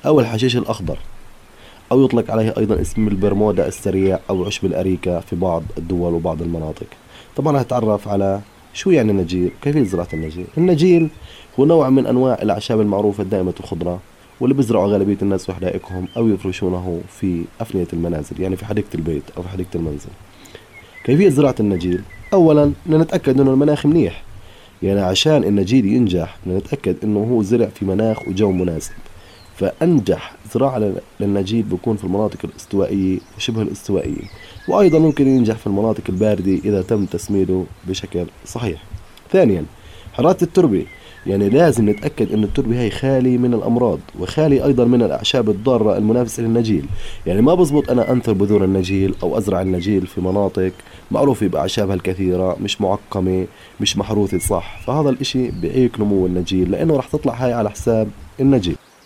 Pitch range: 95-120 Hz